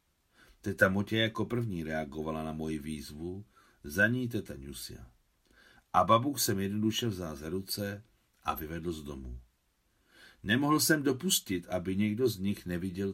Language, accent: Czech, native